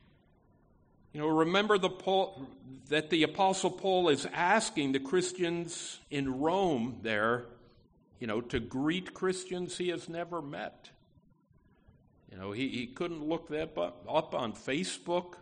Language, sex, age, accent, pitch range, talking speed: English, male, 50-69, American, 130-180 Hz, 135 wpm